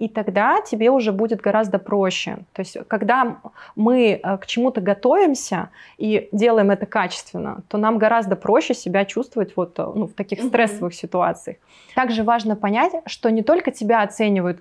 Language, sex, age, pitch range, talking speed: Russian, female, 20-39, 190-225 Hz, 155 wpm